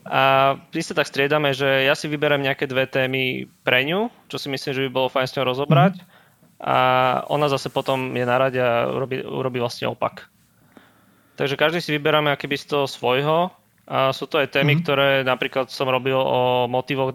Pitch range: 125-140 Hz